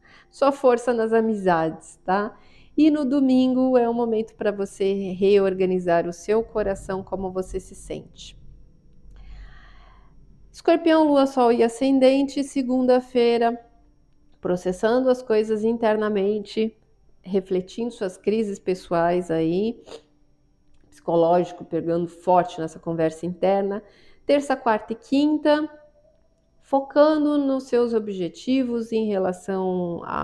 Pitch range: 190-245 Hz